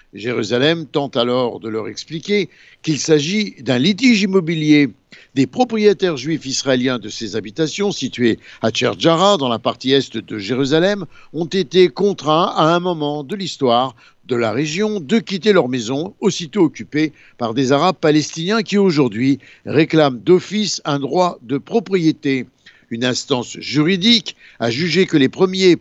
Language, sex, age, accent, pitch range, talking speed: Italian, male, 60-79, French, 130-180 Hz, 150 wpm